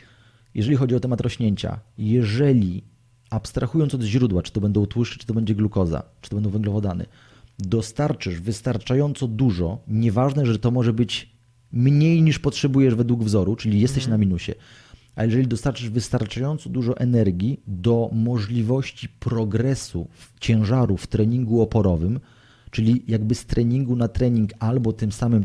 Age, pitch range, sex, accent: 30-49, 100-125 Hz, male, native